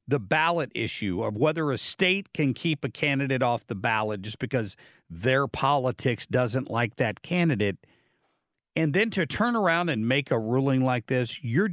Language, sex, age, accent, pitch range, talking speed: English, male, 60-79, American, 125-160 Hz, 175 wpm